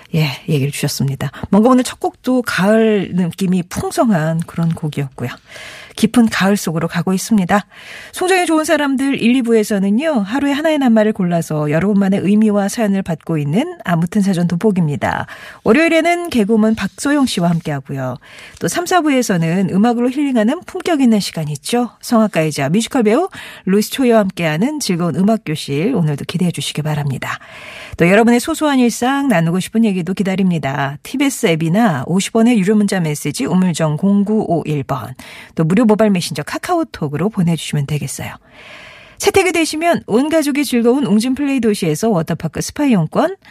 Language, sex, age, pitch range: Korean, female, 40-59, 170-245 Hz